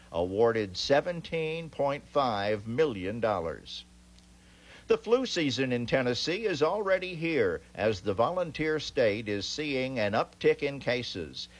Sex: male